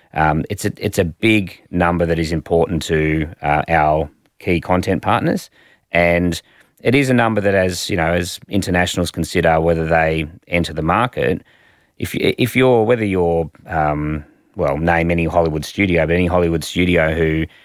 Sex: male